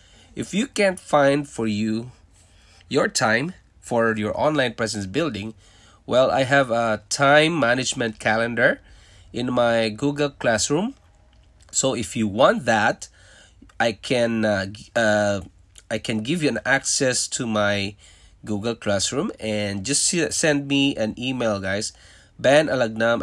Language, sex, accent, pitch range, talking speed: English, male, Filipino, 95-125 Hz, 130 wpm